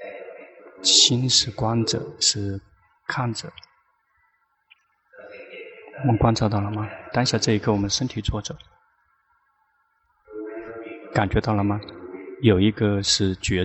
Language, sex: Chinese, male